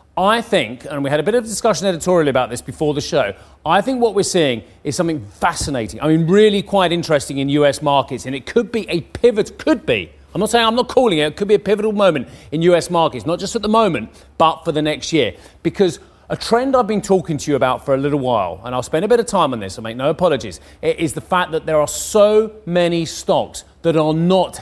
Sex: male